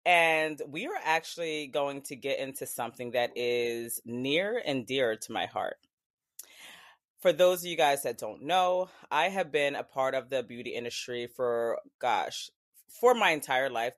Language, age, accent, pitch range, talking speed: English, 20-39, American, 120-155 Hz, 170 wpm